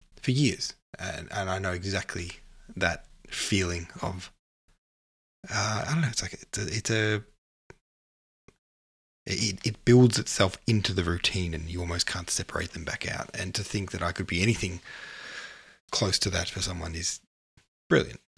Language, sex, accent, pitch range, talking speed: English, male, Australian, 85-105 Hz, 165 wpm